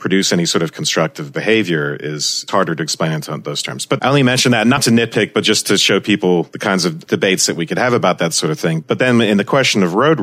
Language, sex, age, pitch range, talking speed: English, male, 40-59, 85-110 Hz, 270 wpm